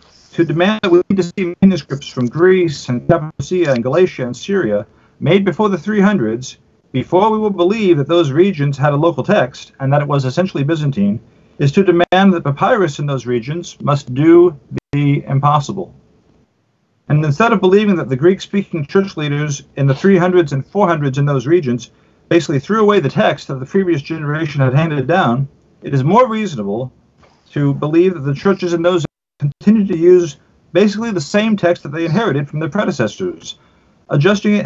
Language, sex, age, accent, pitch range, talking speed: English, male, 50-69, American, 140-185 Hz, 180 wpm